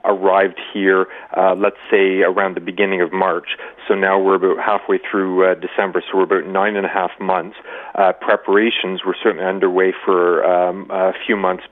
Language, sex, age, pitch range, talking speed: English, male, 40-59, 90-100 Hz, 185 wpm